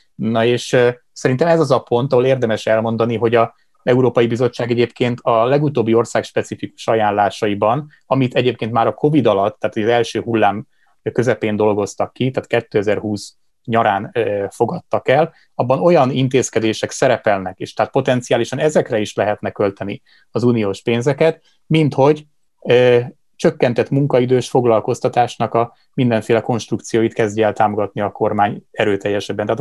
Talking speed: 140 wpm